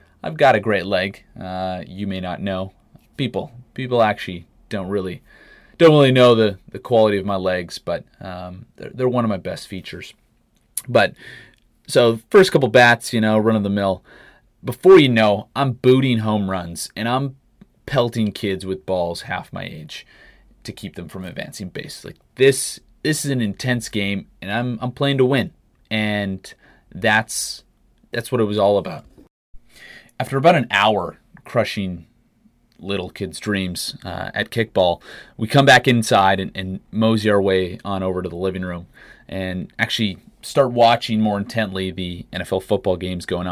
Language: English